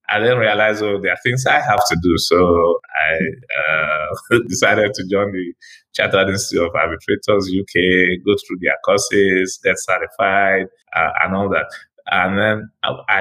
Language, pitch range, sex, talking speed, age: English, 90-110 Hz, male, 165 wpm, 20-39